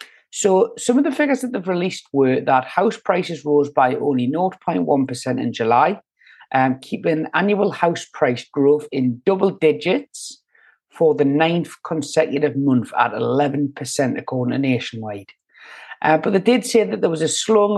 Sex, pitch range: male, 135-180 Hz